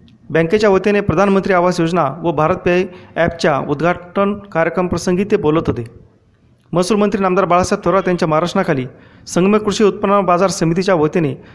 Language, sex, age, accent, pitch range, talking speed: Marathi, male, 30-49, native, 160-190 Hz, 130 wpm